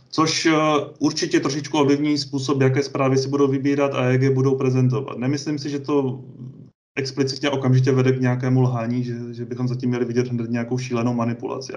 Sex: male